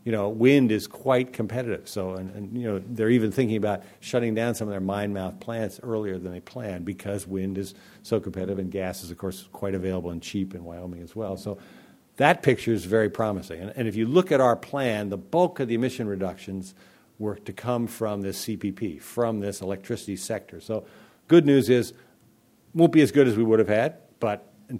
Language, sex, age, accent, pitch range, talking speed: English, male, 50-69, American, 95-120 Hz, 220 wpm